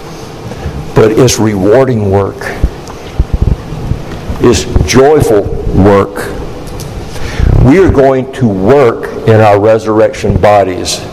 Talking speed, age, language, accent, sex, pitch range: 85 wpm, 60-79, English, American, male, 105-175 Hz